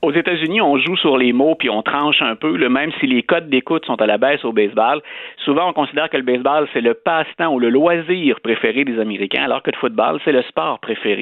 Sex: male